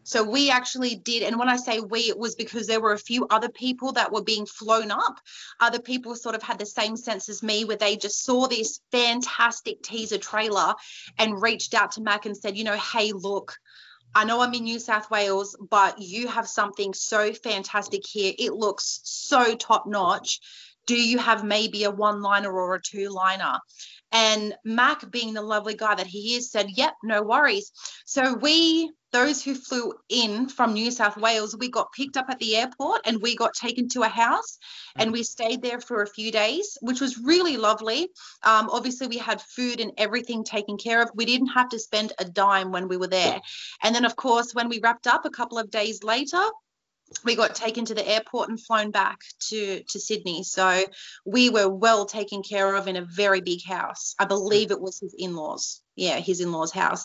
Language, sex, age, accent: English, female, 30-49, Australian